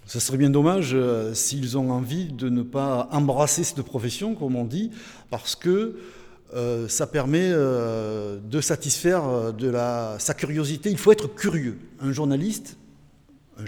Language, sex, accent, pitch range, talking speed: French, male, French, 130-180 Hz, 155 wpm